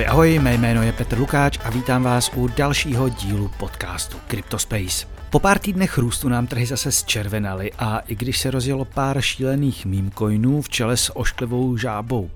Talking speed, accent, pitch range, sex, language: 170 wpm, native, 110-135 Hz, male, Czech